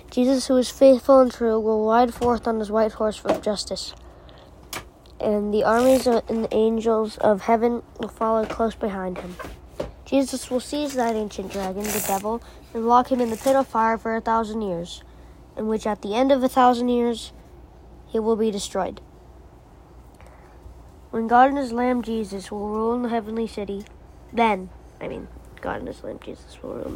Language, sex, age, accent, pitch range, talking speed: English, female, 20-39, American, 215-255 Hz, 185 wpm